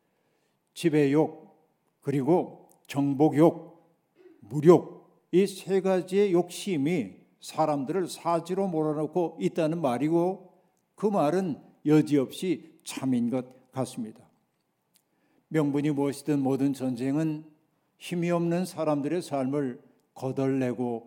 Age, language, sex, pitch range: 60-79, Korean, male, 140-170 Hz